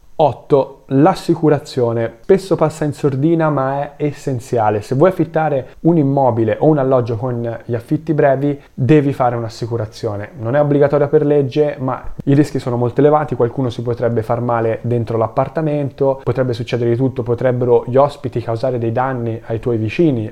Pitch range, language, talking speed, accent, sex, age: 120-150 Hz, Italian, 160 wpm, native, male, 20-39